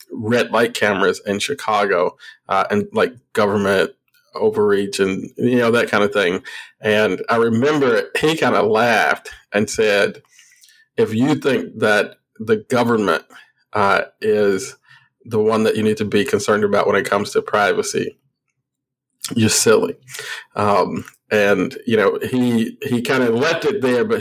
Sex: male